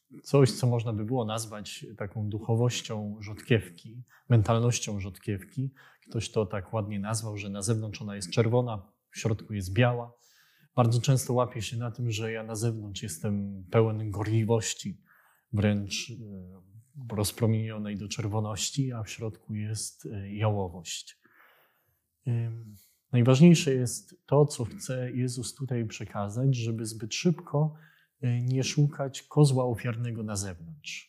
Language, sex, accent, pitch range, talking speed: Polish, male, native, 105-120 Hz, 125 wpm